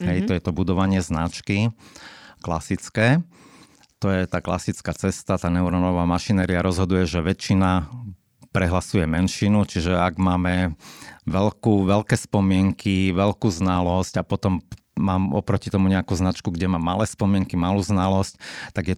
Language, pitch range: Slovak, 90-100 Hz